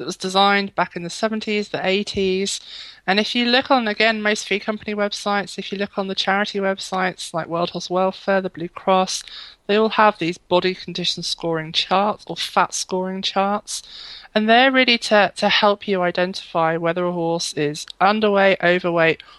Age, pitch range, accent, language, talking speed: 20-39, 170-200 Hz, British, English, 185 wpm